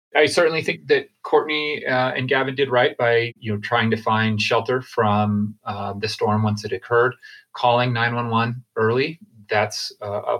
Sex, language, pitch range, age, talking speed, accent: male, English, 105-130 Hz, 30-49, 175 wpm, American